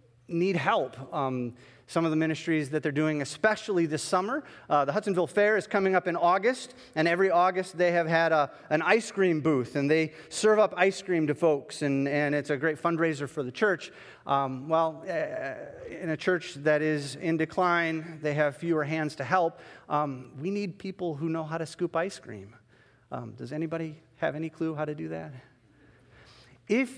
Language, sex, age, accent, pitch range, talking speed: English, male, 40-59, American, 145-185 Hz, 195 wpm